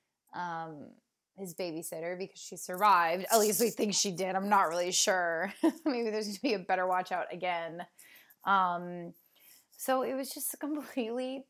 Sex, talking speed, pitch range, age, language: female, 165 wpm, 185-235 Hz, 20-39, English